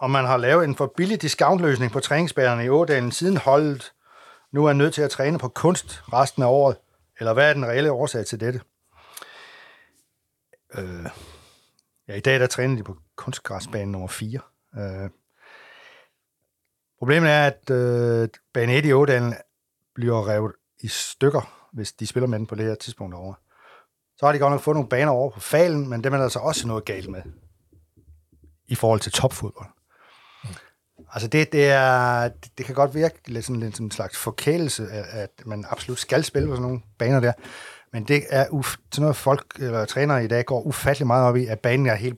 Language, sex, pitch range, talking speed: Danish, male, 110-140 Hz, 190 wpm